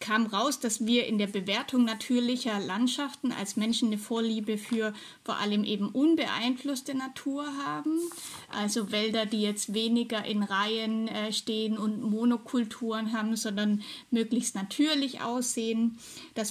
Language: German